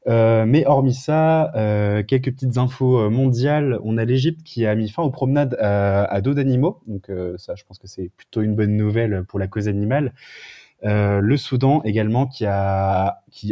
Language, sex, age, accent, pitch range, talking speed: French, male, 20-39, French, 100-130 Hz, 195 wpm